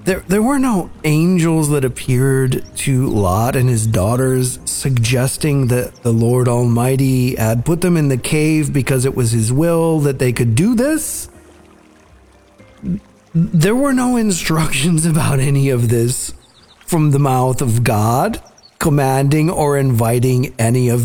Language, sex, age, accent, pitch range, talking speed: English, male, 50-69, American, 115-150 Hz, 145 wpm